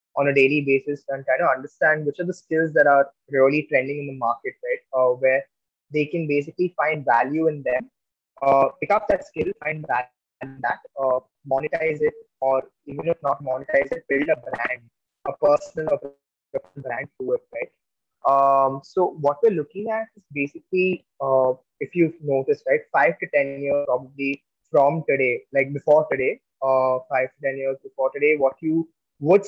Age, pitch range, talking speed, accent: 20-39, 135-160 Hz, 180 wpm, Indian